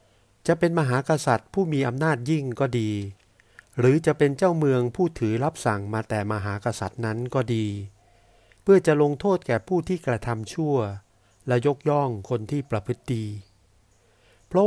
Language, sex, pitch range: Thai, male, 105-140 Hz